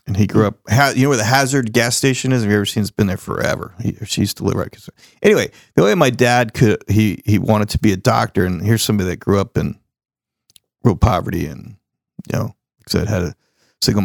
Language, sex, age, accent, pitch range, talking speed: English, male, 40-59, American, 100-125 Hz, 245 wpm